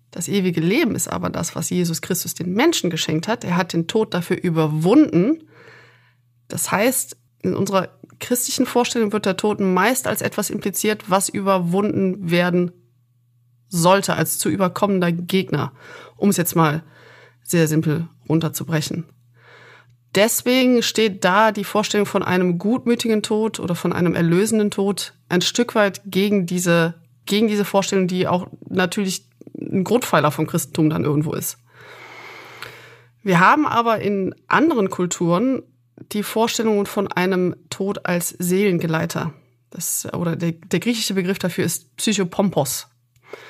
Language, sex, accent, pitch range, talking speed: German, female, German, 160-210 Hz, 140 wpm